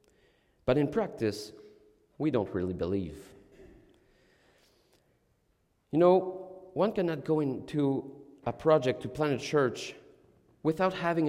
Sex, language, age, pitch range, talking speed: male, English, 40-59, 125-170 Hz, 110 wpm